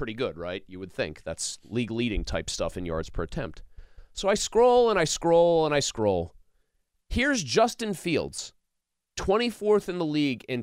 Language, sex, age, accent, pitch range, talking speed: English, male, 30-49, American, 130-210 Hz, 180 wpm